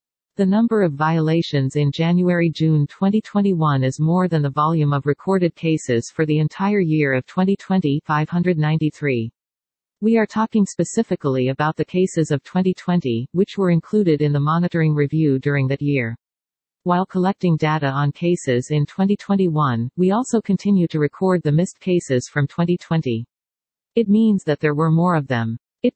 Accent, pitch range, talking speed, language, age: American, 145-185 Hz, 155 wpm, English, 50-69